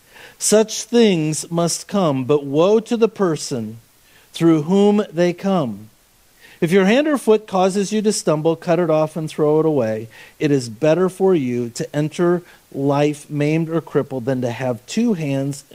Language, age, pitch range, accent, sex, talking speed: English, 40-59, 125-170 Hz, American, male, 170 wpm